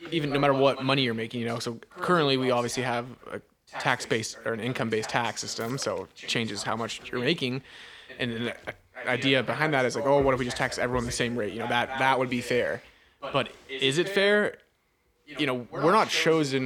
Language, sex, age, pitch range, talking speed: English, male, 20-39, 120-140 Hz, 225 wpm